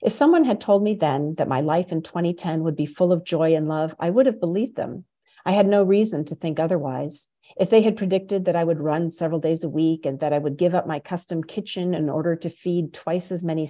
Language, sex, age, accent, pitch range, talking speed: English, female, 50-69, American, 160-190 Hz, 255 wpm